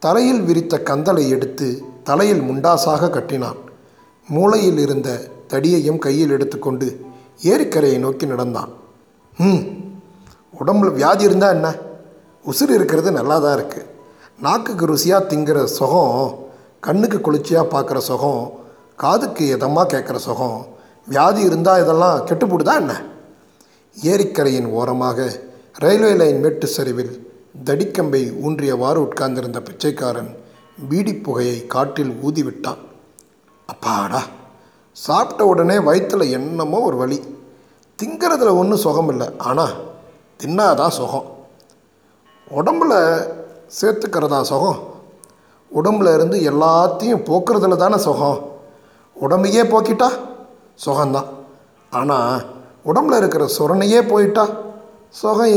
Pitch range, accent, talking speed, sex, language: 135-195 Hz, native, 95 wpm, male, Tamil